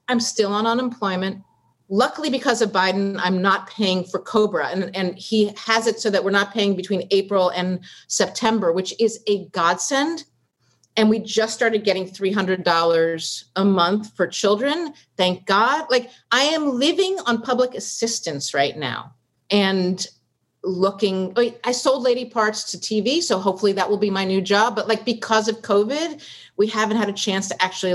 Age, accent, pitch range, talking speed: 40-59, American, 180-230 Hz, 175 wpm